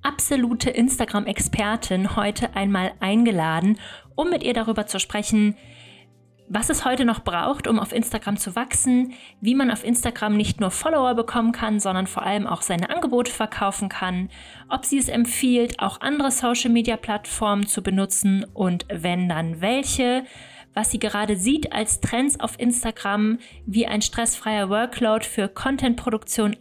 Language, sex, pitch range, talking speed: German, female, 205-245 Hz, 145 wpm